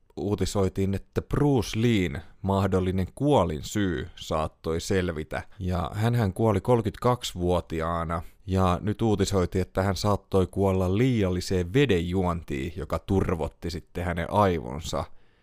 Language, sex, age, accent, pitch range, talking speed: Finnish, male, 30-49, native, 85-105 Hz, 115 wpm